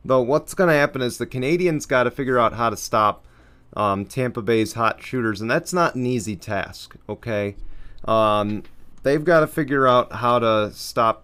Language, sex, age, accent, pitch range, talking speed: English, male, 30-49, American, 100-125 Hz, 190 wpm